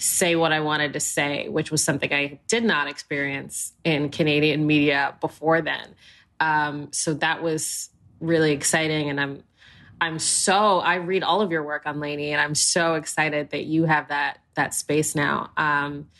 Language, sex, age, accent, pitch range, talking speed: English, female, 20-39, American, 155-185 Hz, 180 wpm